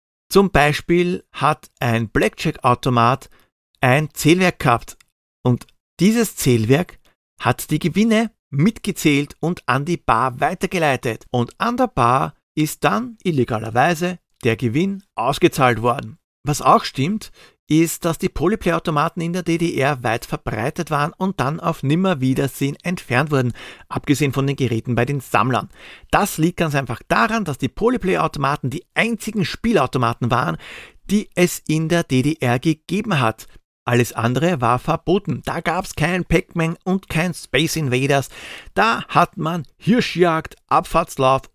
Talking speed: 135 wpm